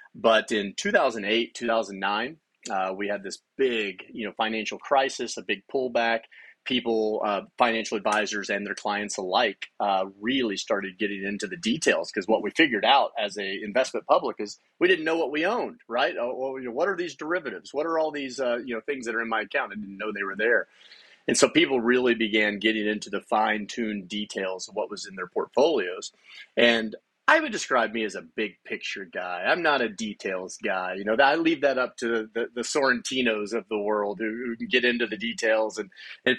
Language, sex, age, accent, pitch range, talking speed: English, male, 30-49, American, 105-125 Hz, 210 wpm